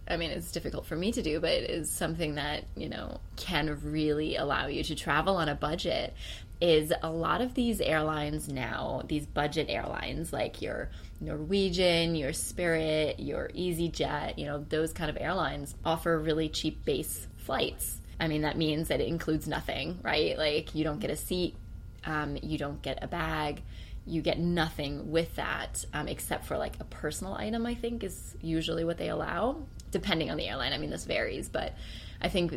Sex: female